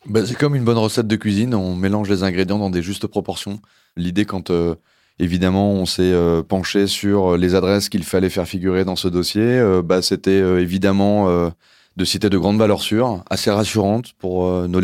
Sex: male